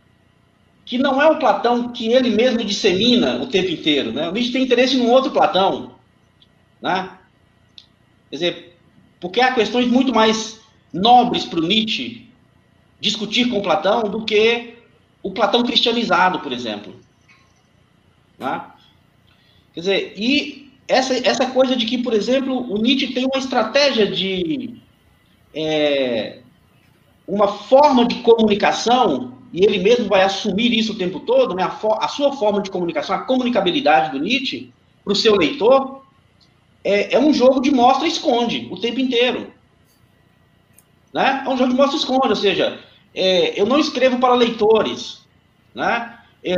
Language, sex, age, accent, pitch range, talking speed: Portuguese, male, 40-59, Brazilian, 195-260 Hz, 145 wpm